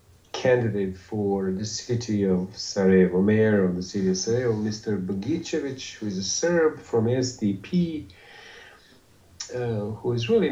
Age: 40-59